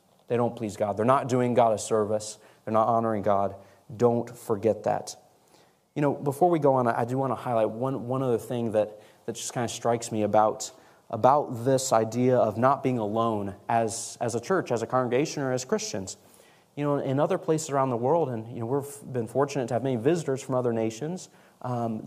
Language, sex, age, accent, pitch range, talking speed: English, male, 30-49, American, 115-165 Hz, 215 wpm